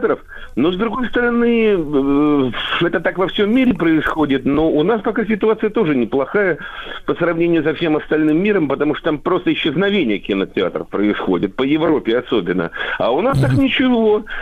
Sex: male